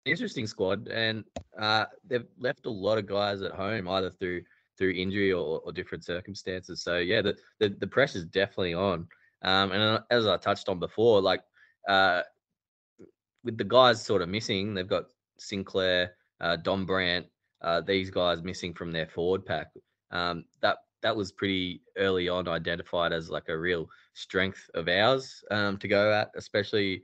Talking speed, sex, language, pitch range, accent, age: 170 wpm, male, English, 85-100 Hz, Australian, 20-39